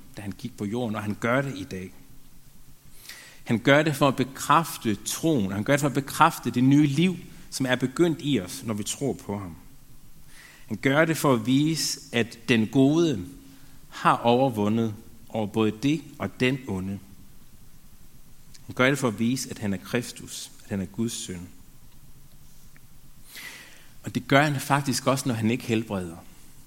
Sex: male